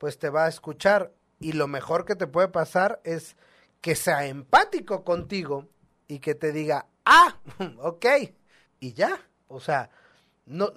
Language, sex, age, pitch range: Spanish, male, 40-59, 150-230 Hz